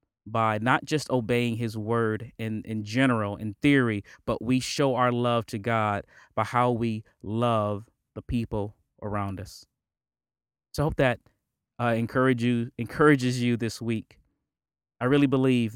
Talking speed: 145 wpm